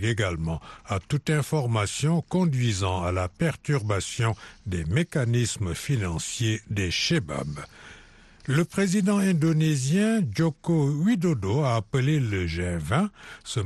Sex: male